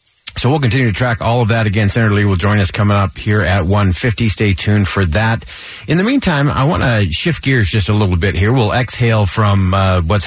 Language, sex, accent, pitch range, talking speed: English, male, American, 95-115 Hz, 245 wpm